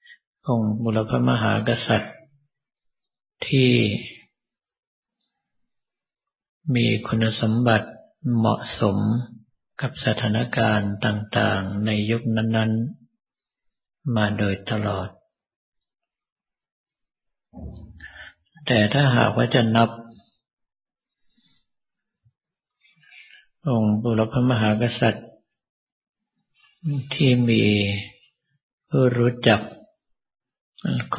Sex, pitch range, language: male, 105-125 Hz, Thai